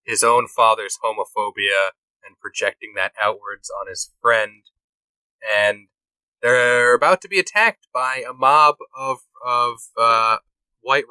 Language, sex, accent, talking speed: English, male, American, 130 wpm